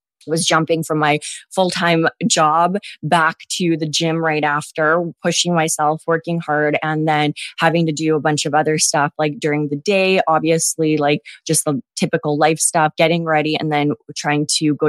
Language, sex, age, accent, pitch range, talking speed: English, female, 20-39, American, 155-180 Hz, 175 wpm